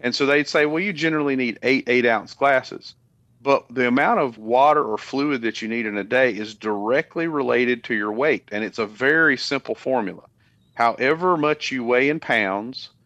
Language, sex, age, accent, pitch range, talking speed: English, male, 40-59, American, 115-145 Hz, 200 wpm